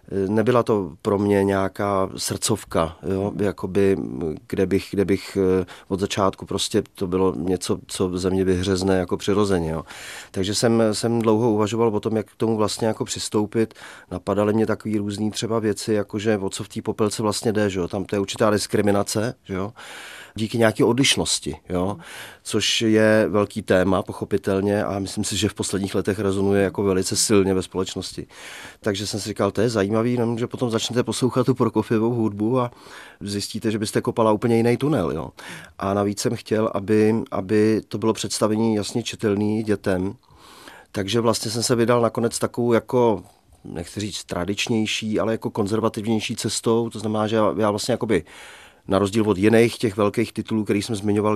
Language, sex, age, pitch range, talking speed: Czech, male, 30-49, 100-110 Hz, 170 wpm